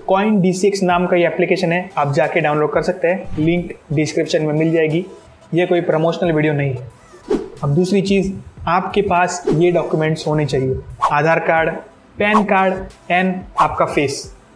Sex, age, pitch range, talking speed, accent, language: male, 20-39, 160-190 Hz, 165 wpm, Indian, English